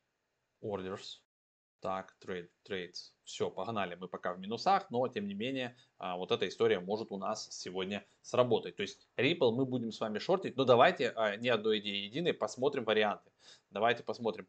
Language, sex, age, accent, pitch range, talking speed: Russian, male, 20-39, native, 95-125 Hz, 165 wpm